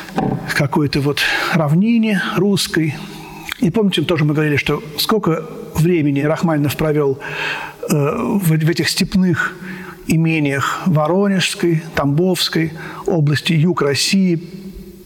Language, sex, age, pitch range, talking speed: Russian, male, 50-69, 155-185 Hz, 95 wpm